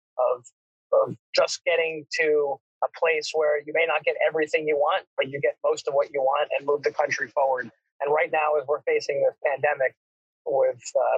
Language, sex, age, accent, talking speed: English, male, 30-49, American, 200 wpm